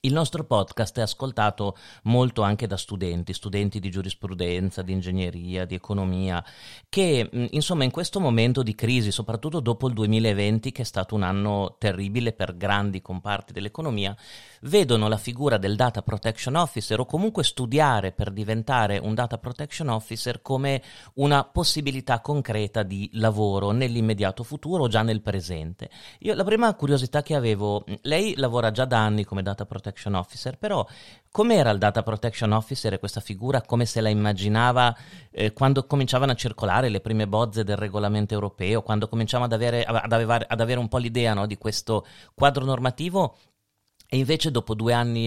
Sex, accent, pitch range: male, native, 100-125 Hz